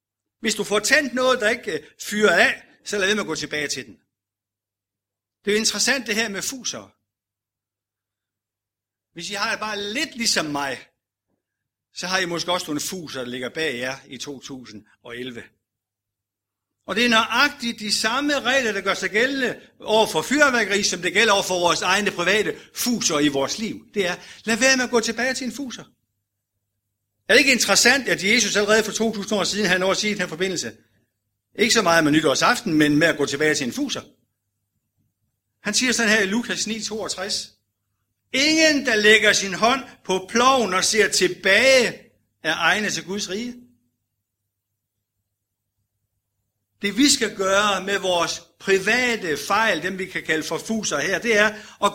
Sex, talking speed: male, 180 wpm